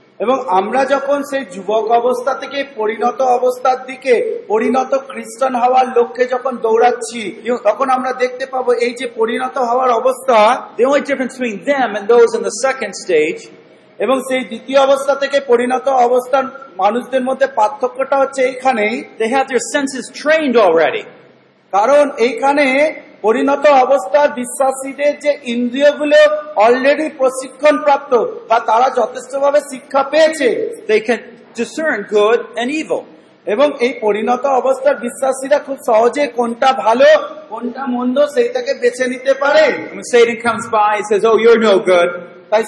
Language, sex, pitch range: Bengali, male, 235-280 Hz